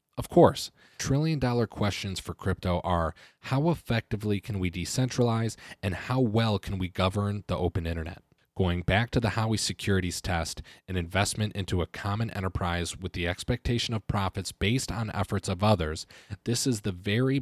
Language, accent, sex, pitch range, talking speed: English, American, male, 90-115 Hz, 170 wpm